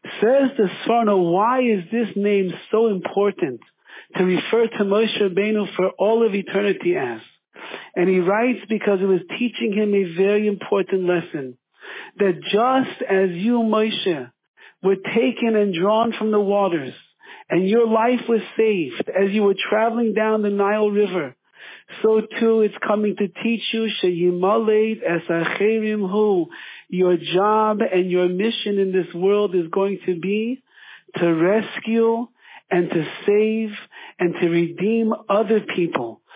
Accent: American